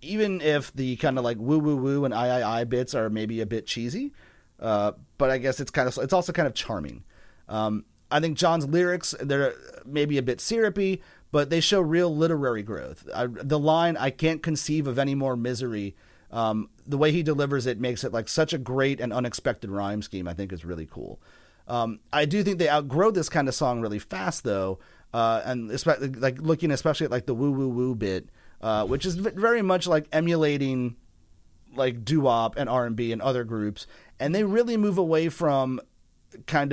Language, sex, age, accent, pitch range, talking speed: English, male, 30-49, American, 110-155 Hz, 195 wpm